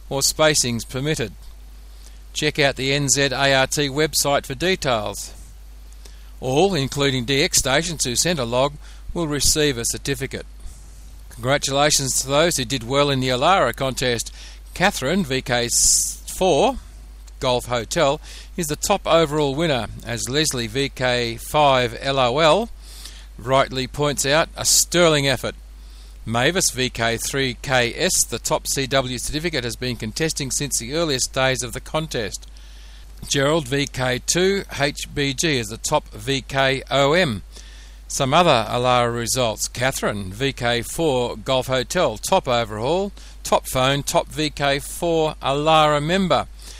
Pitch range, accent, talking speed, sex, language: 120-145 Hz, Australian, 115 wpm, male, English